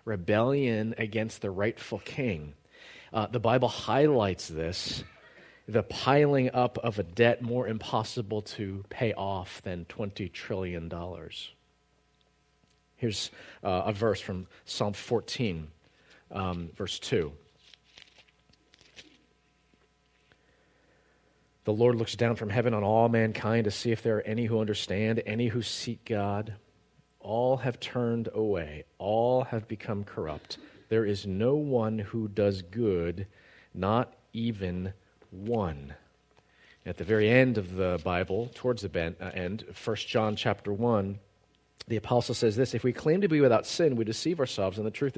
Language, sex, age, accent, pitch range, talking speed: English, male, 40-59, American, 100-120 Hz, 140 wpm